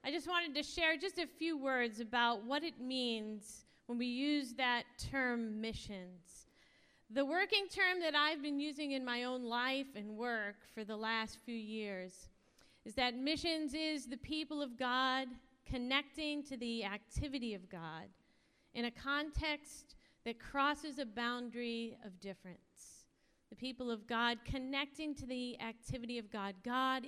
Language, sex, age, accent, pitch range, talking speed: English, female, 40-59, American, 230-295 Hz, 155 wpm